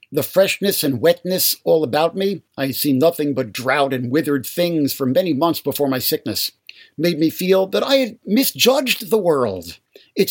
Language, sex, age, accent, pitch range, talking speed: English, male, 50-69, American, 140-180 Hz, 190 wpm